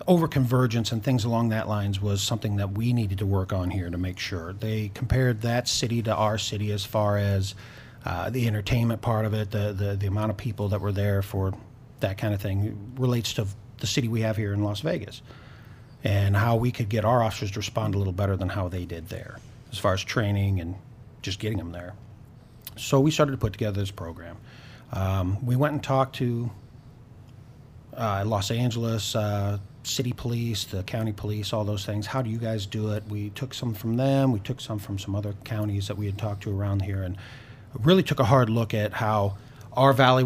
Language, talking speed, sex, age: English, 220 wpm, male, 40-59